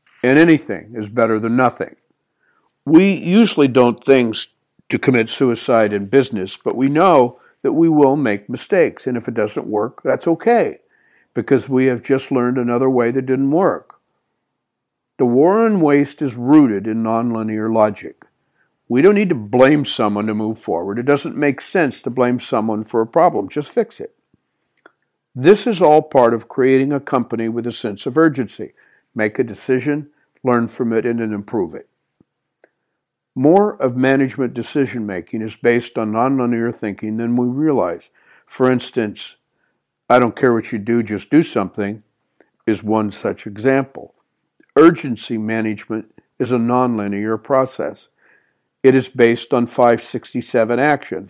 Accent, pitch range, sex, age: American, 110-135 Hz, male, 60-79